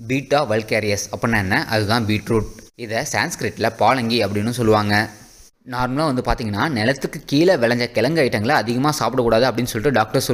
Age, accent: 20-39, native